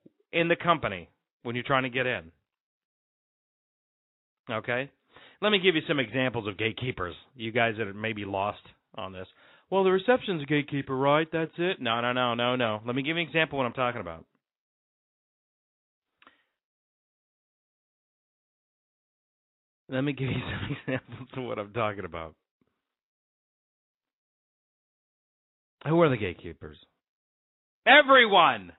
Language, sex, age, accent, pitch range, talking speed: English, male, 30-49, American, 115-170 Hz, 140 wpm